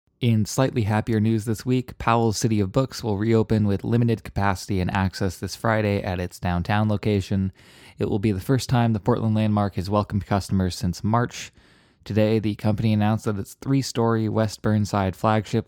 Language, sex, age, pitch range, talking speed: English, male, 20-39, 100-115 Hz, 180 wpm